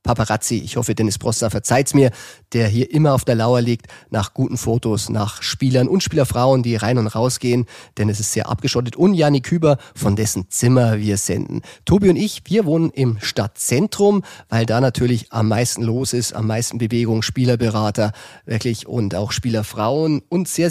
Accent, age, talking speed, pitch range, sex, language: German, 30-49, 185 wpm, 115-145 Hz, male, German